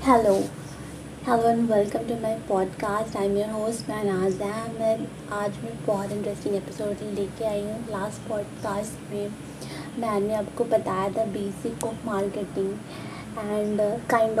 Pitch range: 200-235 Hz